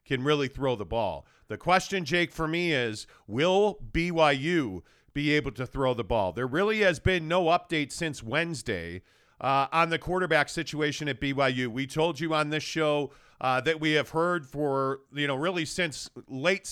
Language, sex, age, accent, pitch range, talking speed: English, male, 40-59, American, 135-165 Hz, 185 wpm